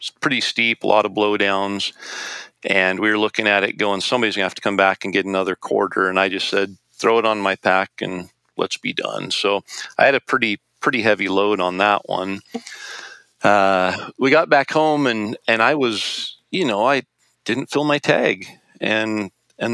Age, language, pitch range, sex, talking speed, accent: 40-59, English, 100-115 Hz, male, 200 wpm, American